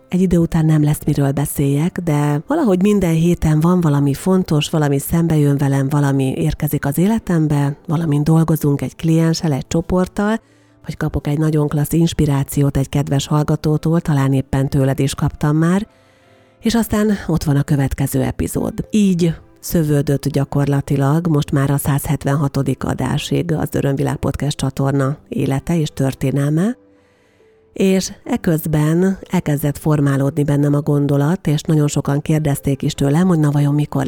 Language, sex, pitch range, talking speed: Hungarian, female, 140-165 Hz, 145 wpm